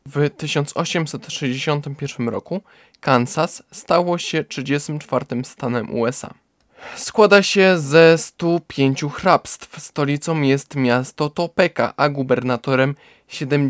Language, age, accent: Polish, 20-39, native